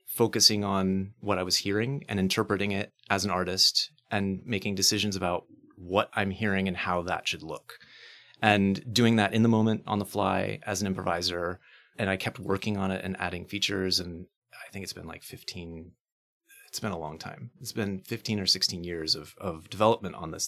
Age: 30-49